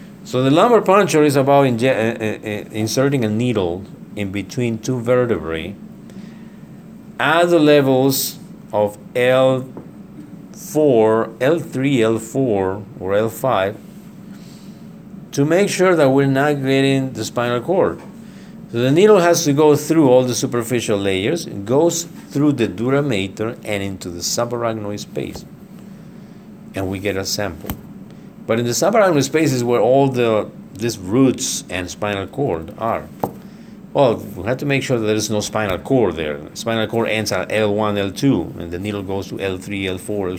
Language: English